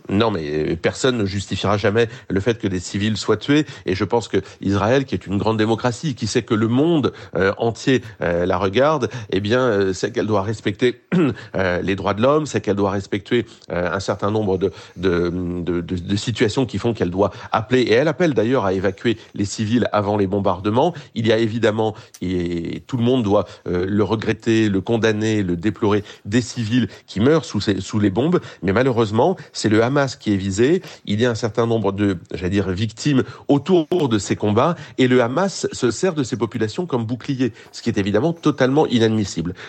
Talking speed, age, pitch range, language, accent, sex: 200 wpm, 40-59, 100-125 Hz, French, French, male